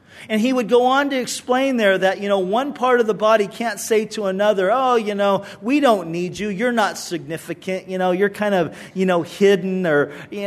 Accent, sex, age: American, male, 40-59